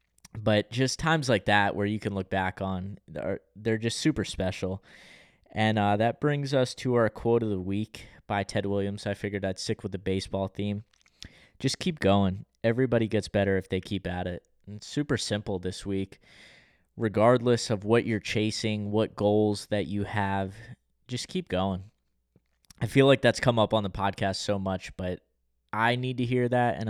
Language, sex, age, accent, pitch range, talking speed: English, male, 20-39, American, 95-110 Hz, 190 wpm